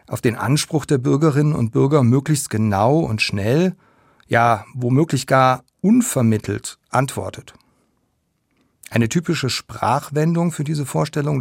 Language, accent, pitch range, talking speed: German, German, 120-155 Hz, 115 wpm